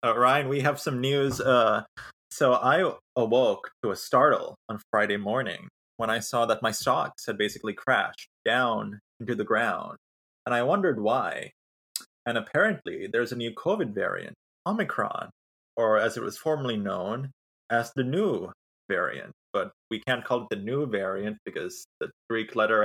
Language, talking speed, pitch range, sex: English, 165 wpm, 110-135 Hz, male